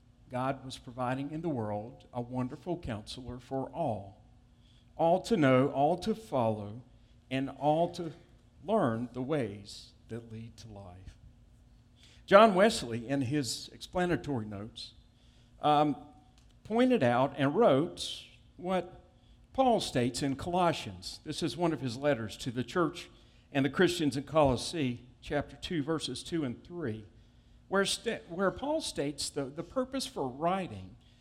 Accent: American